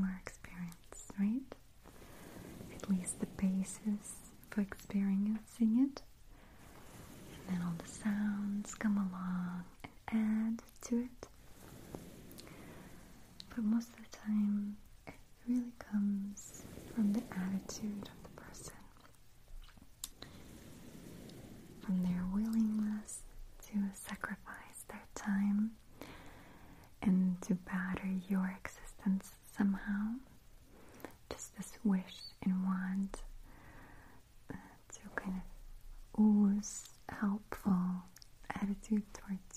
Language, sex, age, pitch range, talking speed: English, female, 30-49, 190-215 Hz, 90 wpm